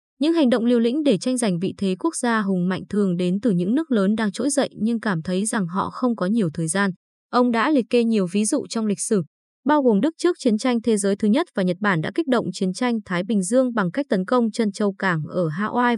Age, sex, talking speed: 20-39, female, 275 wpm